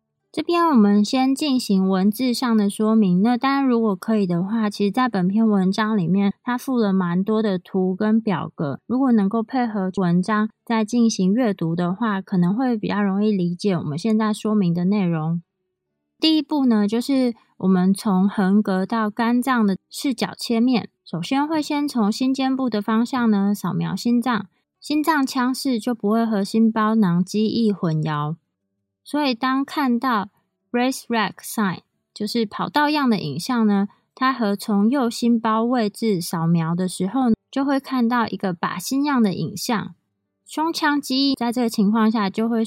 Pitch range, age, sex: 190-245 Hz, 20-39, female